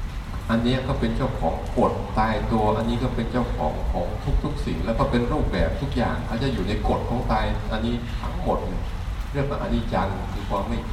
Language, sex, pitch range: Thai, male, 90-120 Hz